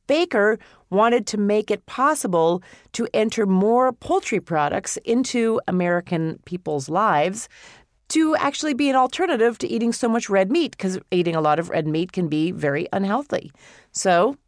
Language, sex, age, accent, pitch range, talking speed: English, female, 40-59, American, 175-260 Hz, 160 wpm